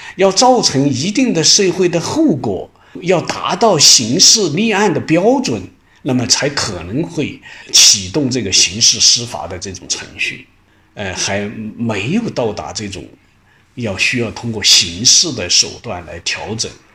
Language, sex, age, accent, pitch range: Chinese, male, 50-69, native, 110-170 Hz